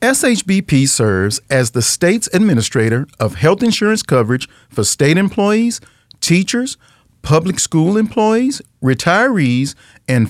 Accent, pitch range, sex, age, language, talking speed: American, 120-195 Hz, male, 40-59, English, 110 wpm